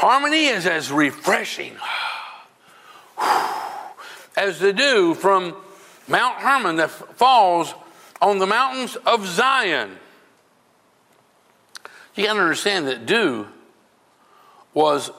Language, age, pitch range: English, 60-79, 175-265 Hz